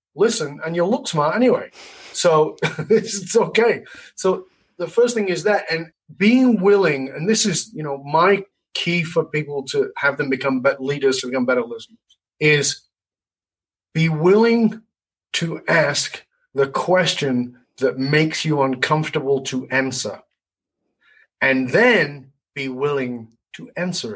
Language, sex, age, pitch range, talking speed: English, male, 30-49, 130-180 Hz, 140 wpm